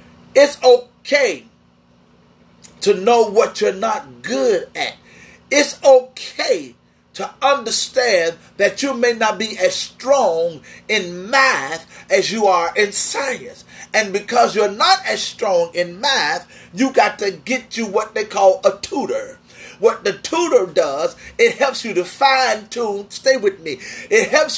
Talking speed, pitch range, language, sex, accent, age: 145 wpm, 205-295 Hz, English, male, American, 40-59